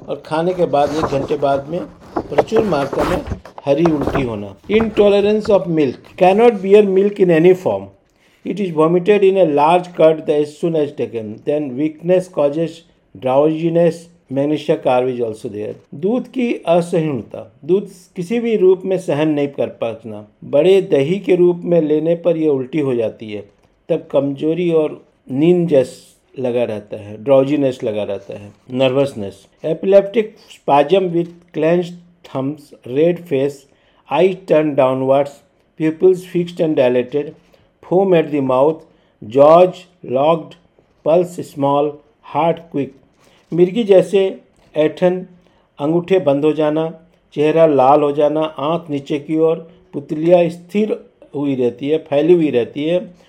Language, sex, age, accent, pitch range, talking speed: Hindi, male, 50-69, native, 145-180 Hz, 135 wpm